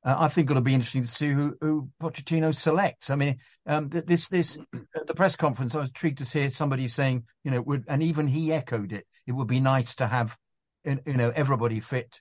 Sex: male